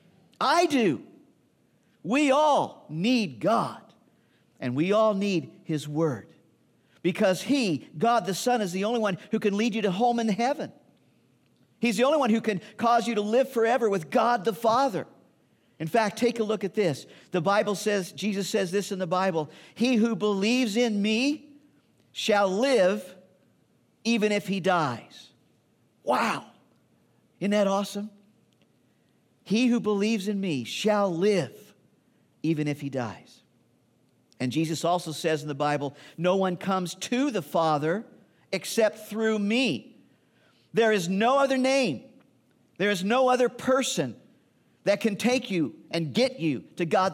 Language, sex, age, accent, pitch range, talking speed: English, male, 50-69, American, 170-235 Hz, 155 wpm